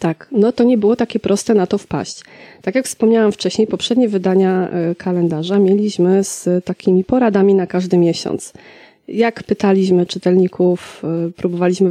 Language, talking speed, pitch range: Polish, 140 wpm, 180-215 Hz